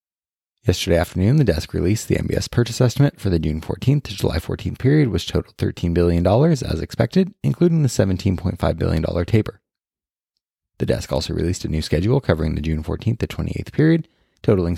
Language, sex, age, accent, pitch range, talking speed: English, male, 20-39, American, 85-125 Hz, 175 wpm